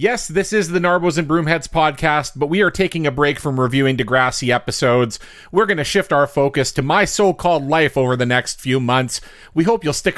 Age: 40-59